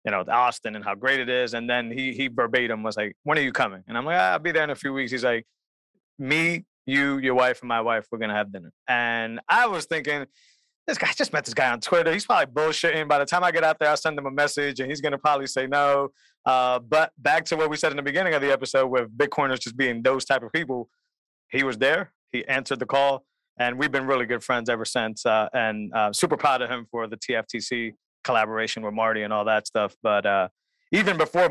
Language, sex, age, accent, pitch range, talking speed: English, male, 30-49, American, 120-160 Hz, 255 wpm